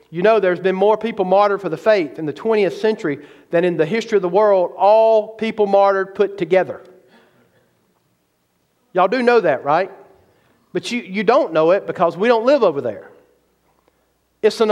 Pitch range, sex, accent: 180-245 Hz, male, American